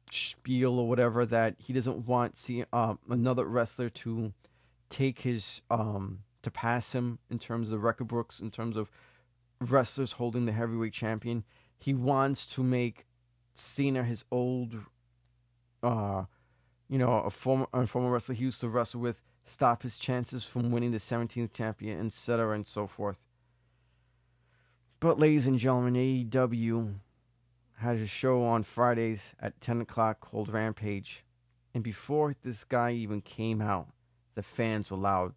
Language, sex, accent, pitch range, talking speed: English, male, American, 110-125 Hz, 155 wpm